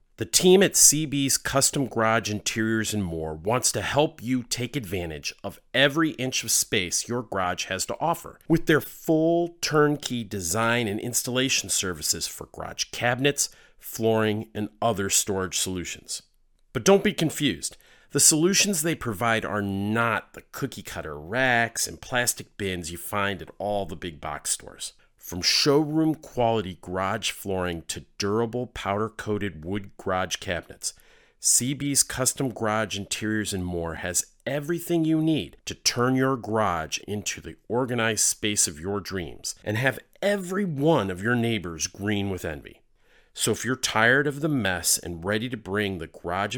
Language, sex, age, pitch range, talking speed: English, male, 40-59, 100-135 Hz, 155 wpm